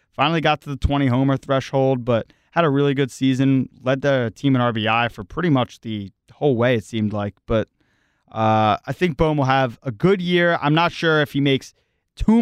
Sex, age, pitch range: male, 30-49, 115-145 Hz